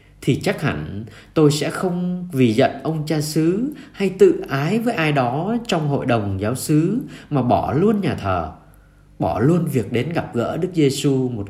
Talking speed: 190 wpm